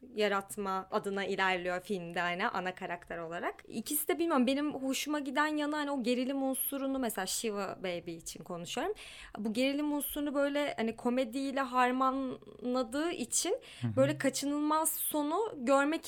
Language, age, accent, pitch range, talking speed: Turkish, 20-39, native, 215-280 Hz, 135 wpm